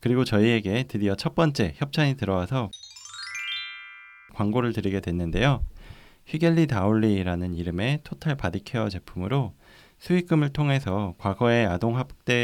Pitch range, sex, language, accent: 95-140 Hz, male, Korean, native